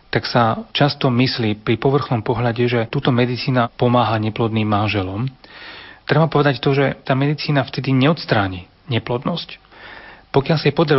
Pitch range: 115-140 Hz